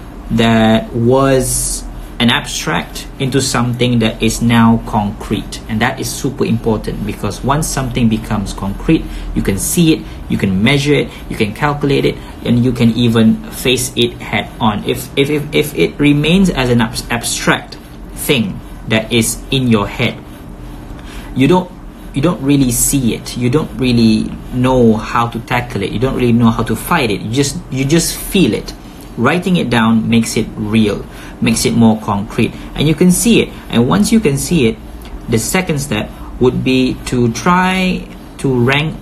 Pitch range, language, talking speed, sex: 110-135 Hz, Malay, 175 wpm, male